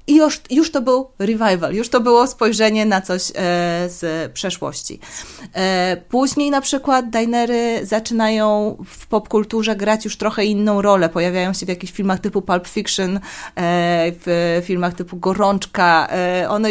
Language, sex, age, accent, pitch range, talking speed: Polish, female, 30-49, native, 180-225 Hz, 140 wpm